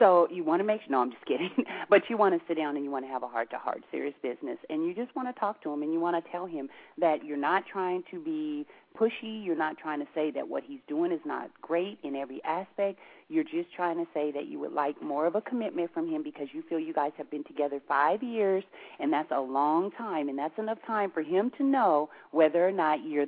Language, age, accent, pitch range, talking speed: English, 40-59, American, 150-235 Hz, 265 wpm